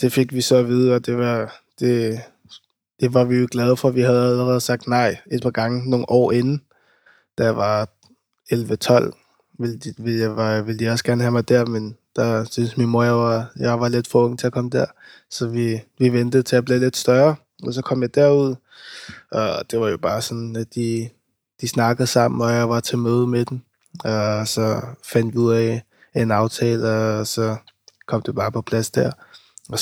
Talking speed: 210 wpm